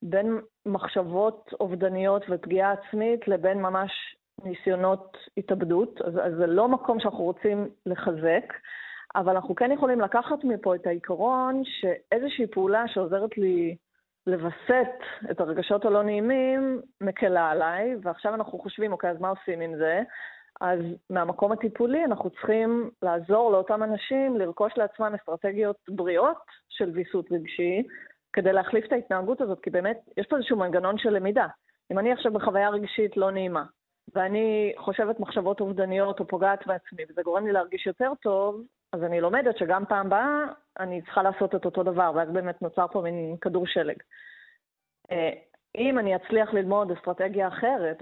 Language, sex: Hebrew, female